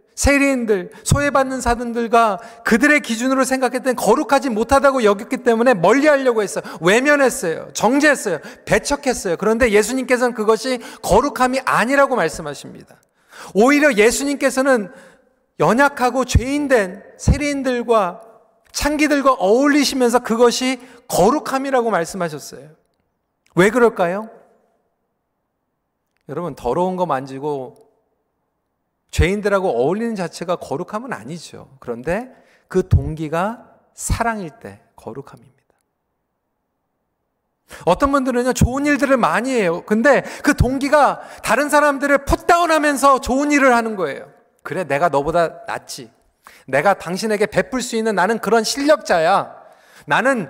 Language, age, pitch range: Korean, 40-59, 195-270 Hz